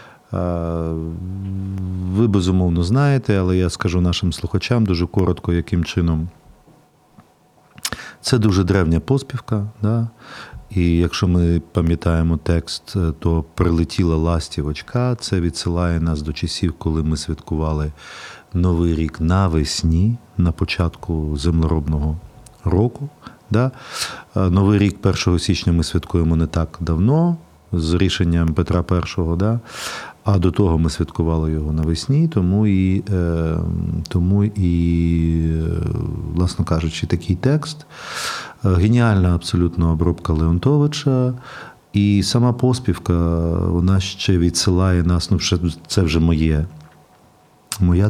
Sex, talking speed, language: male, 110 wpm, Ukrainian